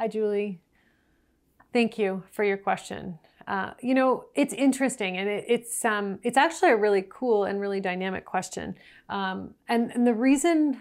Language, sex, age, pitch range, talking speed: English, female, 30-49, 200-245 Hz, 165 wpm